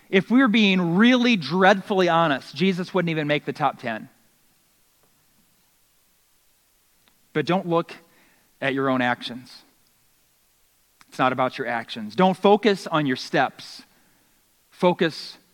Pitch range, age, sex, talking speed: 145-195 Hz, 40-59, male, 120 wpm